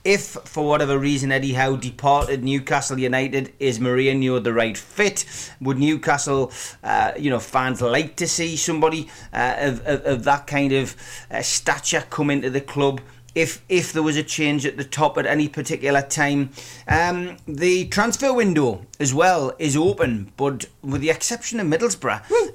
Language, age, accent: English, 30-49, British